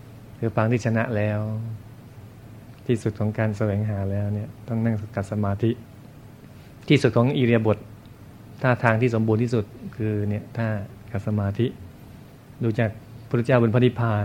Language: Thai